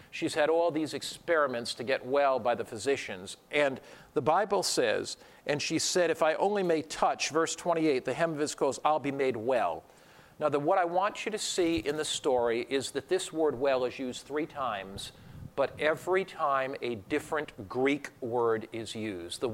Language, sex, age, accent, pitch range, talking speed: English, male, 50-69, American, 135-175 Hz, 190 wpm